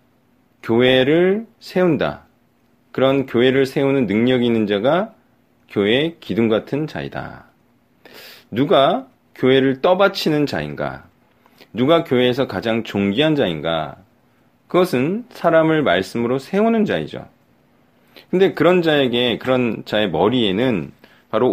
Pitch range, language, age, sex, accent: 110-165 Hz, Korean, 40-59, male, native